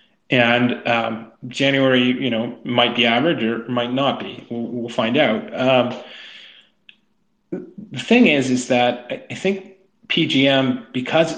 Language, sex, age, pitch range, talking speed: English, male, 30-49, 120-140 Hz, 135 wpm